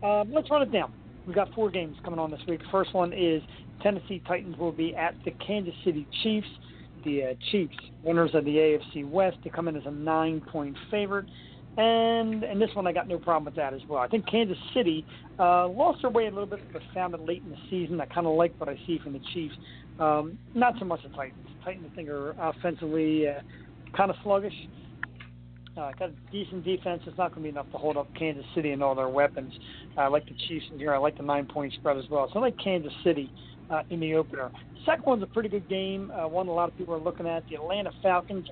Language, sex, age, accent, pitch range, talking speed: English, male, 40-59, American, 145-185 Hz, 245 wpm